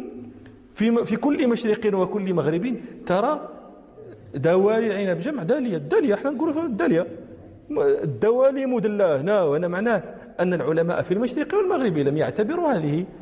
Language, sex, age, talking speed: Arabic, male, 40-59, 120 wpm